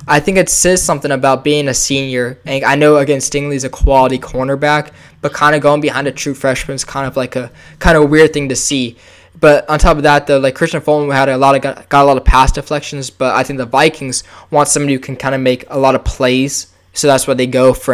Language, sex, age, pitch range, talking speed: English, male, 10-29, 125-150 Hz, 265 wpm